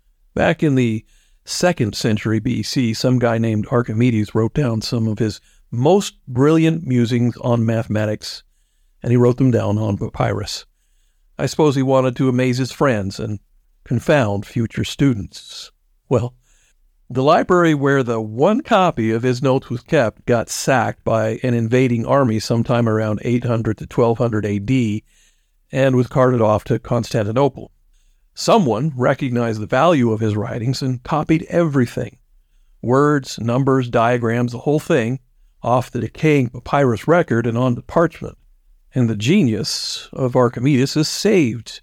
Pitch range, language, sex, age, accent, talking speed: 110-135 Hz, English, male, 50-69, American, 140 wpm